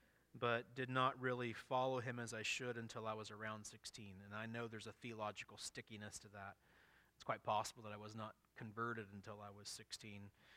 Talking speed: 200 wpm